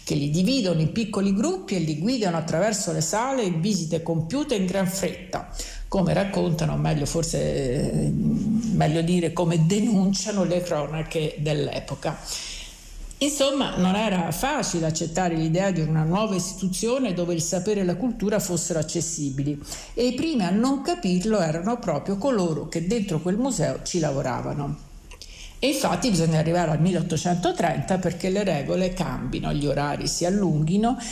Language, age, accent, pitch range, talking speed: Italian, 50-69, native, 165-230 Hz, 145 wpm